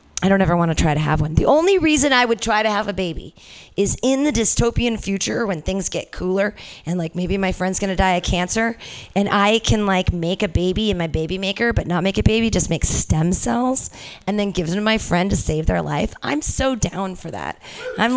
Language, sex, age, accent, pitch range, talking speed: English, female, 30-49, American, 195-270 Hz, 245 wpm